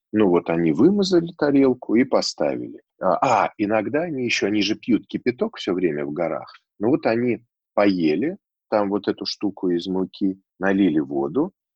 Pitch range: 85-135 Hz